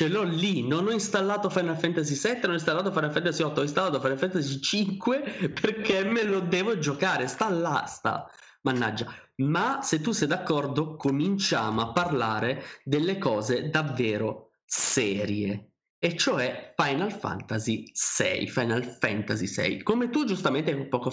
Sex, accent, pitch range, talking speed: male, native, 130-195 Hz, 150 wpm